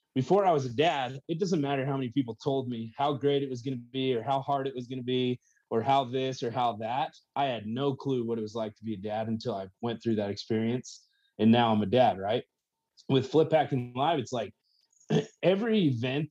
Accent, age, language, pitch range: American, 30-49, English, 120-140 Hz